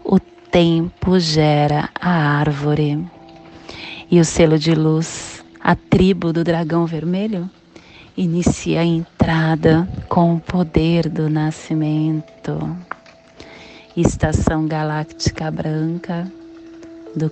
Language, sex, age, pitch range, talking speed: Portuguese, female, 30-49, 155-220 Hz, 90 wpm